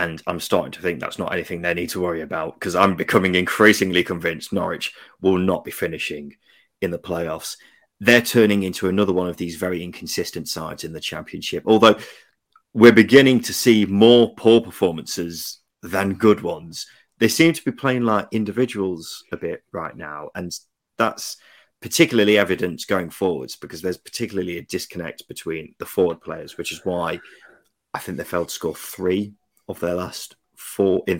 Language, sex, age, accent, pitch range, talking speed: English, male, 30-49, British, 85-105 Hz, 175 wpm